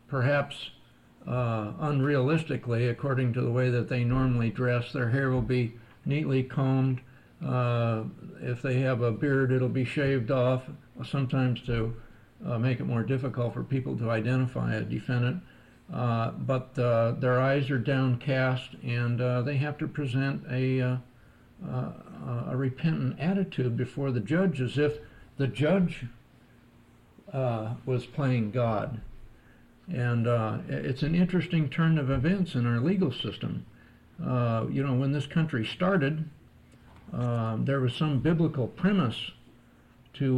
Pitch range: 120-145 Hz